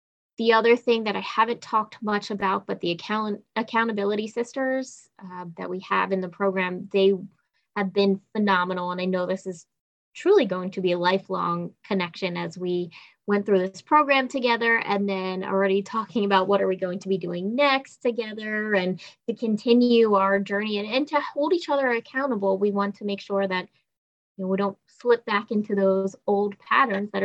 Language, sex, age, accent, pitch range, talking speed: English, female, 20-39, American, 190-230 Hz, 190 wpm